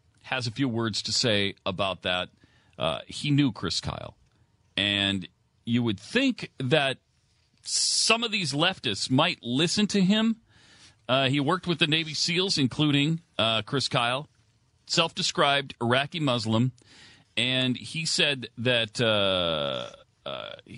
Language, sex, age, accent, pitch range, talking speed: English, male, 40-59, American, 100-140 Hz, 135 wpm